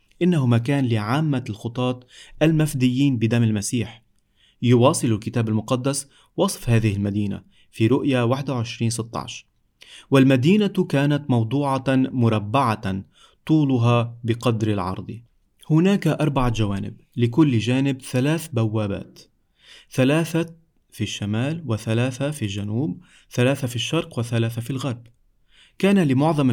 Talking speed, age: 100 wpm, 30-49